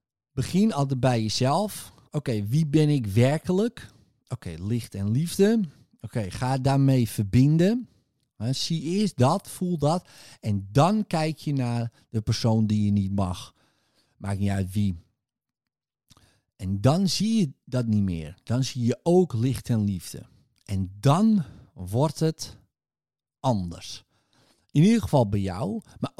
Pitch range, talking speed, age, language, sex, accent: 110-155 Hz, 140 wpm, 50-69, Dutch, male, Dutch